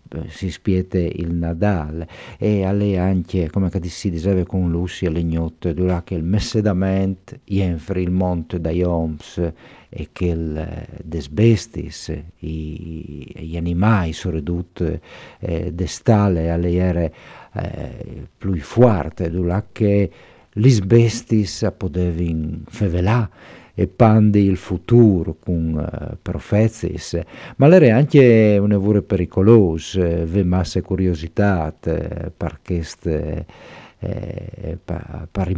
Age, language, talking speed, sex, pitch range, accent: 50-69, Italian, 115 wpm, male, 85-105 Hz, native